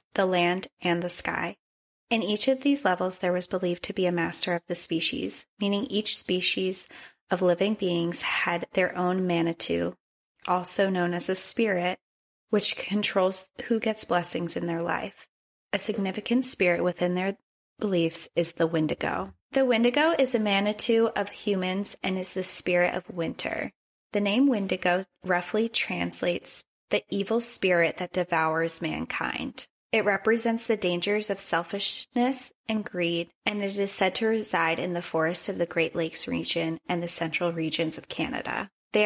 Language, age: English, 20-39